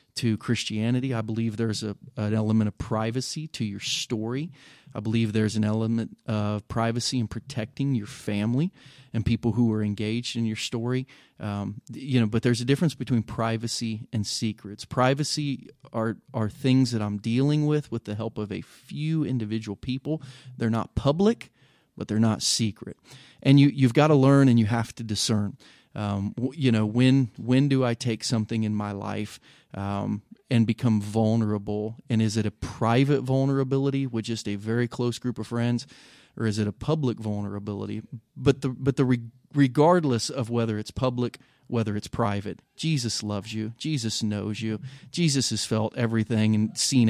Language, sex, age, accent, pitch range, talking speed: English, male, 30-49, American, 110-130 Hz, 175 wpm